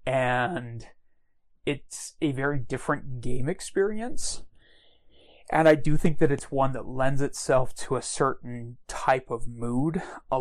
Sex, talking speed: male, 140 wpm